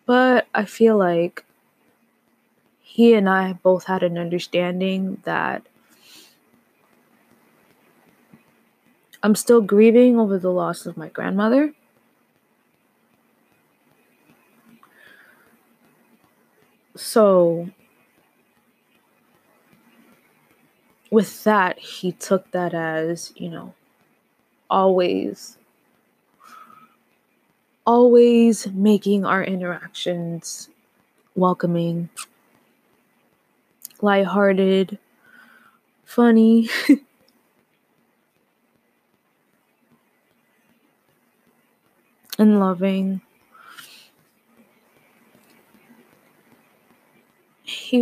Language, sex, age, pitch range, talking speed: English, female, 20-39, 180-230 Hz, 50 wpm